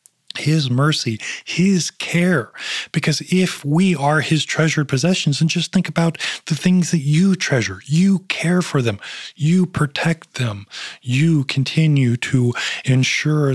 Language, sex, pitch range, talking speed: English, male, 115-150 Hz, 135 wpm